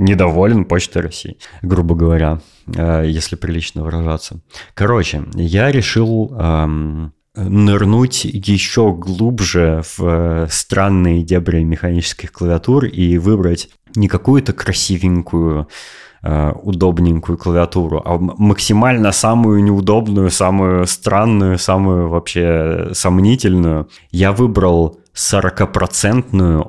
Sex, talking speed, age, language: male, 90 wpm, 20-39, Russian